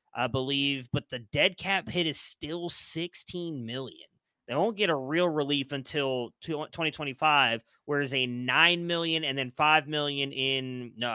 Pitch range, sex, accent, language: 130-165 Hz, male, American, English